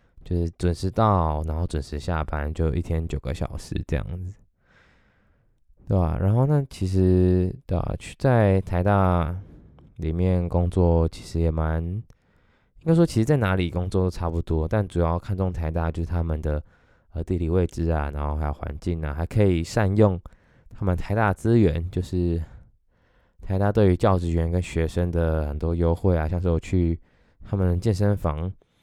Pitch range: 80-100 Hz